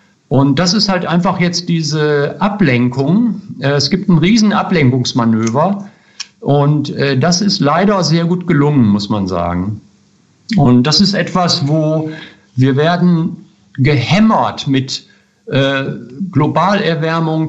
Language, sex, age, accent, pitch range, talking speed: German, male, 50-69, German, 135-180 Hz, 115 wpm